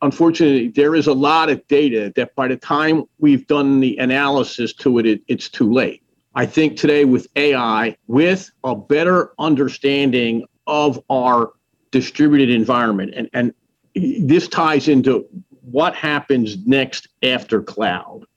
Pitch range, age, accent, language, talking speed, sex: 130-155 Hz, 50-69, American, English, 145 wpm, male